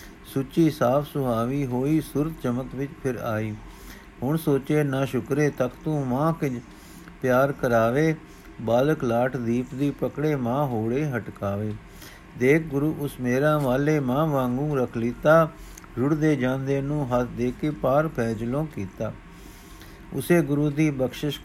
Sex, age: male, 50-69